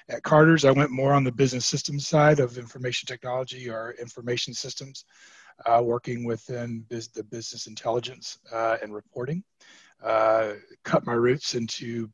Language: English